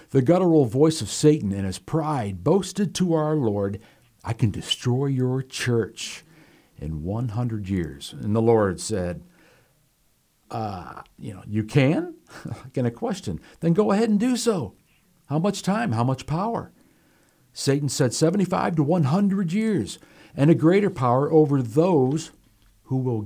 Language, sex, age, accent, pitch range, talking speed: English, male, 60-79, American, 115-160 Hz, 150 wpm